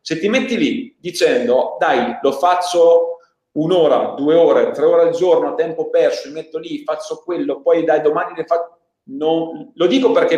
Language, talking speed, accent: Italian, 185 wpm, native